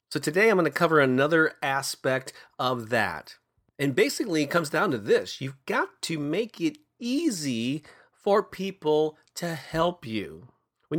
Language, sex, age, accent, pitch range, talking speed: English, male, 30-49, American, 125-170 Hz, 160 wpm